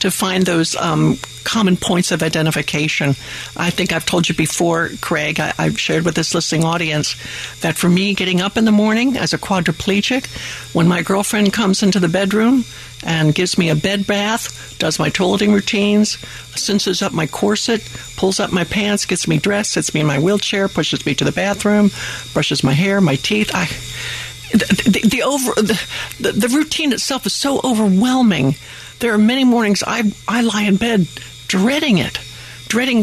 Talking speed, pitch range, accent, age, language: 180 wpm, 165-225 Hz, American, 60-79, English